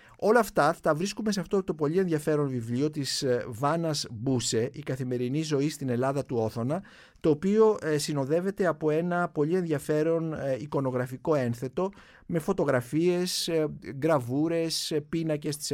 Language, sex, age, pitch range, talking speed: Greek, male, 50-69, 125-165 Hz, 130 wpm